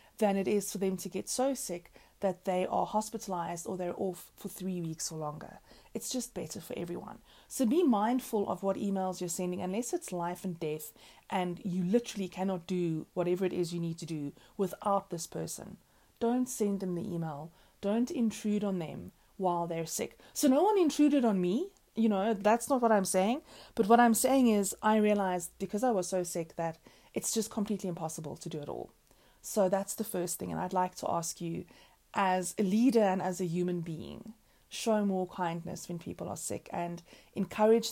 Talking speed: 205 wpm